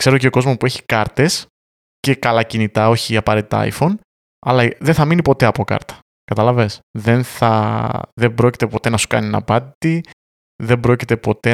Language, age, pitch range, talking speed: Greek, 20-39, 110-140 Hz, 170 wpm